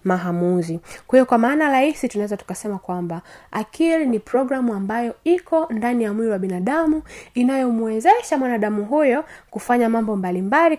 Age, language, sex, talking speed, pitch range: 20-39, Swahili, female, 140 wpm, 190-240 Hz